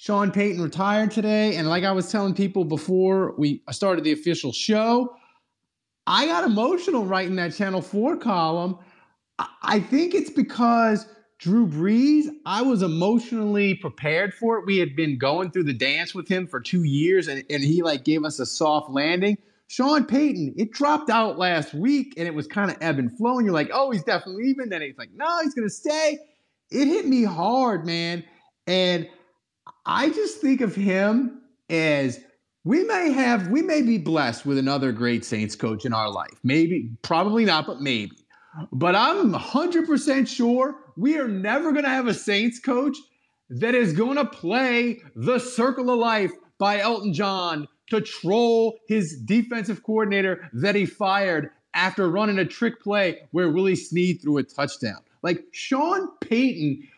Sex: male